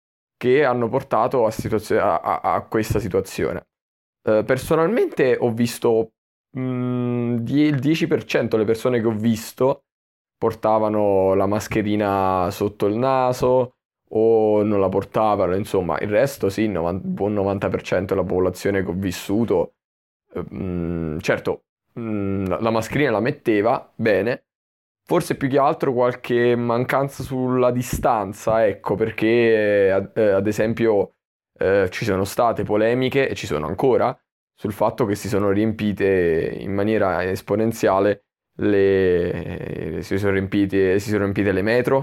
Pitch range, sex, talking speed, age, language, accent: 100-120 Hz, male, 135 wpm, 20-39, Italian, native